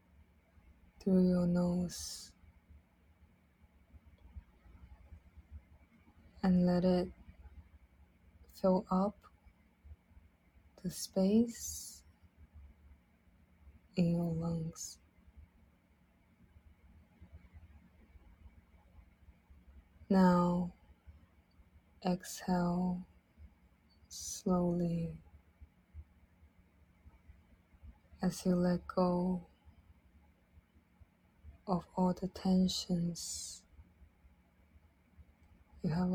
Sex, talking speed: female, 45 wpm